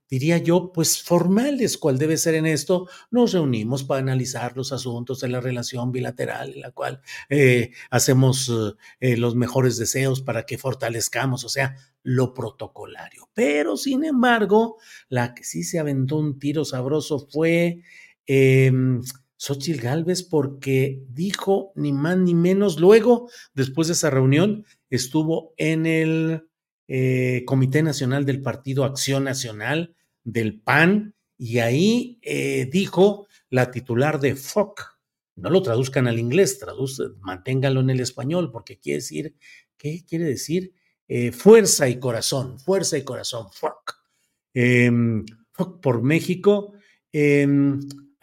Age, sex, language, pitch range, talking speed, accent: 50-69, male, Spanish, 130-175 Hz, 135 wpm, Mexican